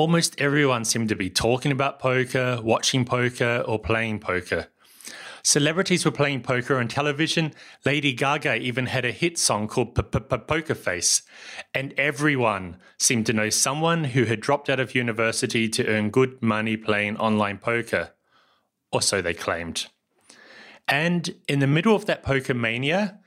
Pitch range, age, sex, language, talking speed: 115-150 Hz, 30-49, male, English, 155 wpm